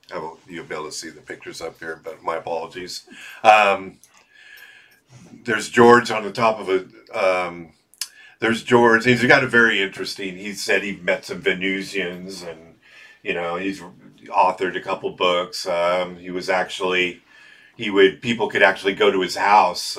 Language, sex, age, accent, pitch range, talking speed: English, male, 50-69, American, 90-115 Hz, 170 wpm